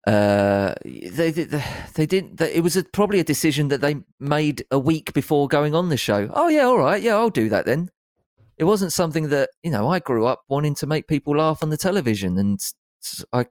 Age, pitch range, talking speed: 30-49, 110-150 Hz, 215 wpm